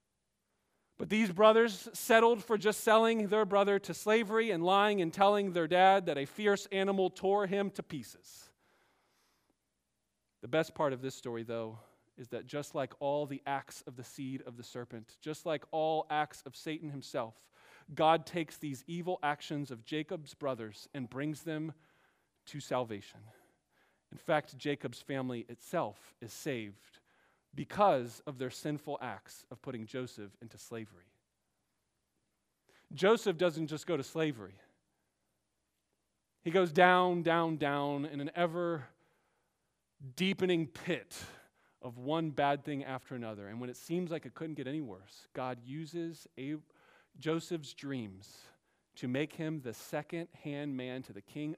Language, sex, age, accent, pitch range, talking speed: English, male, 40-59, American, 130-170 Hz, 150 wpm